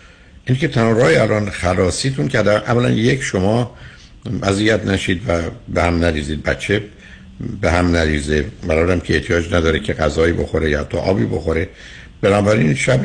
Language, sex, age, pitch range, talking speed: Persian, male, 60-79, 80-120 Hz, 155 wpm